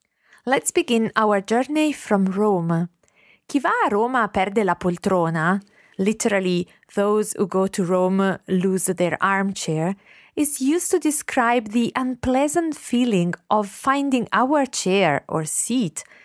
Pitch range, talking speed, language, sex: 180-245 Hz, 130 wpm, English, female